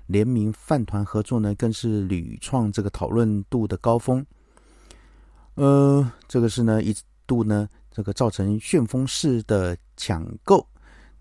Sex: male